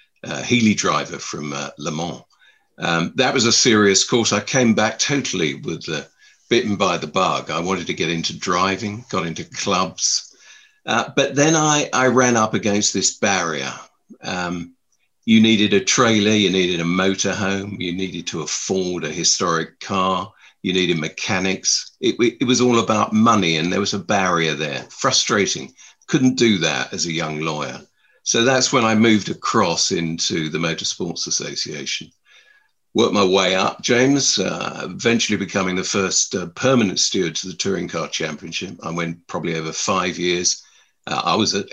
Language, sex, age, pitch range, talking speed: English, male, 50-69, 95-120 Hz, 170 wpm